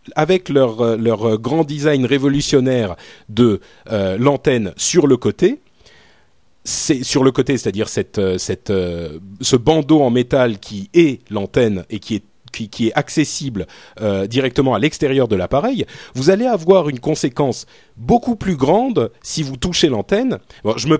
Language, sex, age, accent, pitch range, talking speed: French, male, 40-59, French, 115-170 Hz, 160 wpm